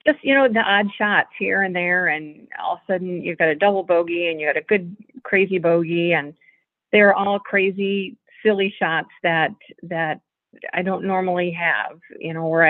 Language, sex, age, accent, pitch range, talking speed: English, female, 40-59, American, 170-200 Hz, 195 wpm